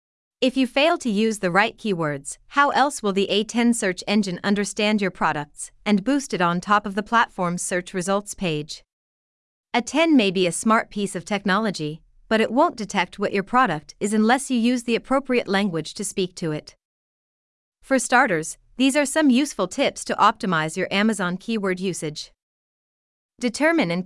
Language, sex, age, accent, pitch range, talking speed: English, female, 30-49, American, 180-245 Hz, 175 wpm